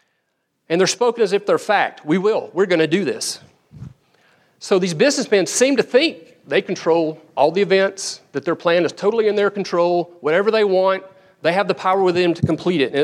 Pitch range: 160-205 Hz